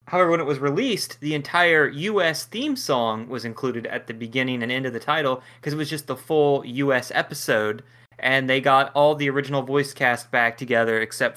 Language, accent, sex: English, American, male